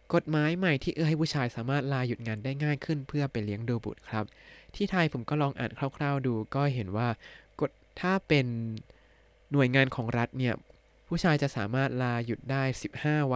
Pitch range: 115-140 Hz